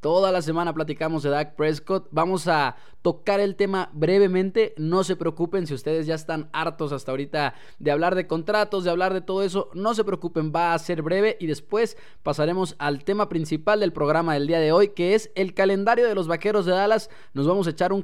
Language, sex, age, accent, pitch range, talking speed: English, male, 20-39, Mexican, 155-205 Hz, 215 wpm